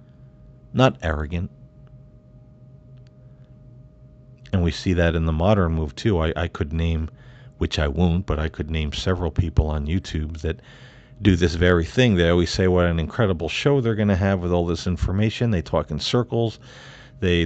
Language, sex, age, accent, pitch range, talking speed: English, male, 50-69, American, 85-125 Hz, 175 wpm